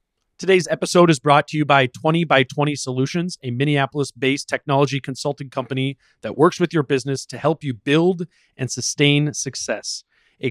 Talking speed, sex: 165 wpm, male